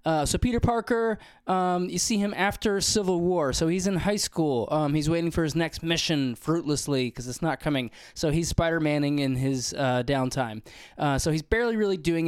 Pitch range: 135-170 Hz